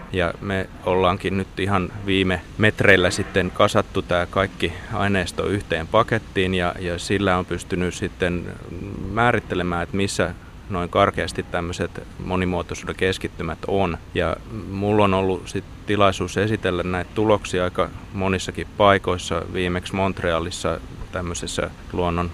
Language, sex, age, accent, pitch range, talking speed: Finnish, male, 30-49, native, 85-95 Hz, 120 wpm